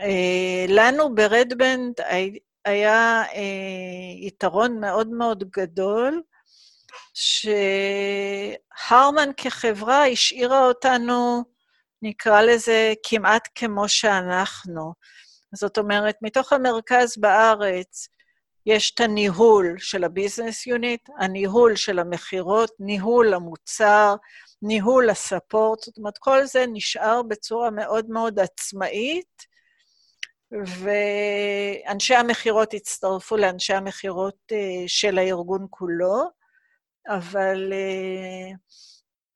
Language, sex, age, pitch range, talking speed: Hebrew, female, 50-69, 195-235 Hz, 80 wpm